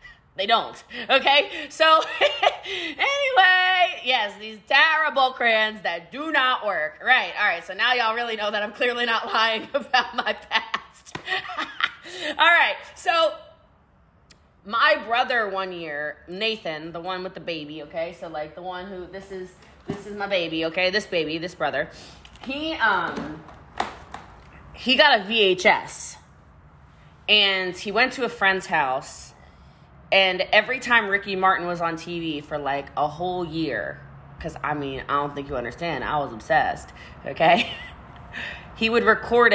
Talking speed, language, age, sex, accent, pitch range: 150 wpm, English, 20-39, female, American, 160-235 Hz